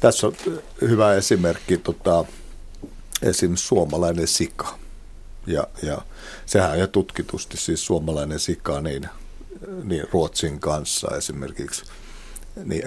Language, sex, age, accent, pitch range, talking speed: Finnish, male, 60-79, native, 75-85 Hz, 105 wpm